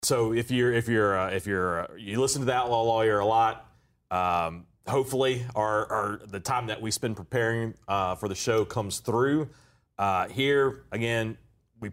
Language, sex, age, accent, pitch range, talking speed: English, male, 30-49, American, 95-120 Hz, 185 wpm